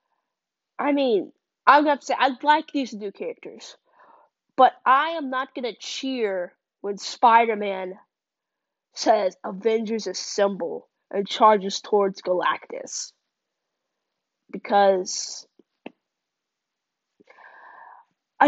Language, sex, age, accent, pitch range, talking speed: English, female, 20-39, American, 220-330 Hz, 95 wpm